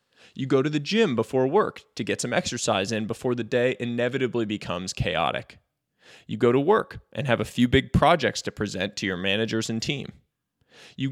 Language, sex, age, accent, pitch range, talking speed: English, male, 20-39, American, 120-170 Hz, 195 wpm